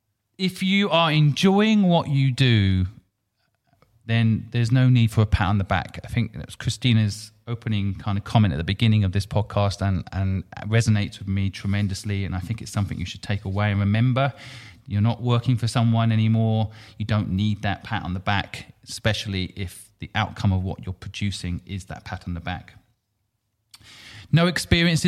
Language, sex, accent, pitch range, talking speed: English, male, British, 100-125 Hz, 185 wpm